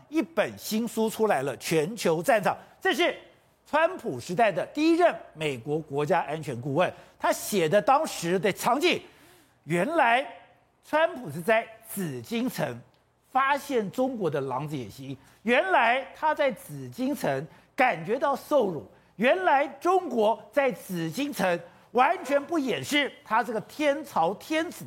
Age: 50-69